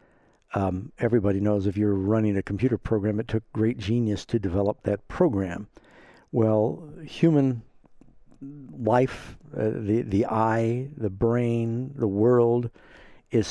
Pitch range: 105-125 Hz